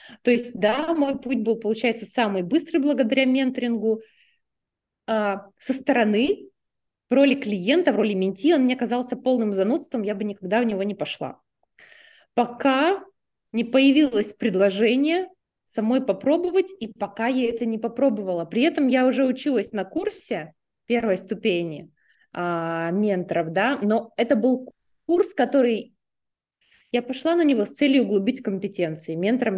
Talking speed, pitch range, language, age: 140 wpm, 200-265 Hz, Russian, 20-39